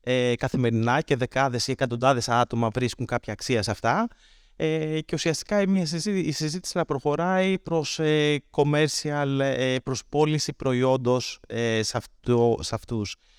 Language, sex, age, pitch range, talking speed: Greek, male, 20-39, 130-165 Hz, 130 wpm